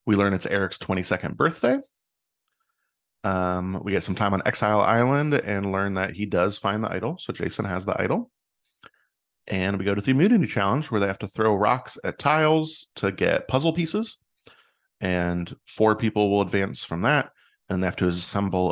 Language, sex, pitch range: English, male, 90-120 Hz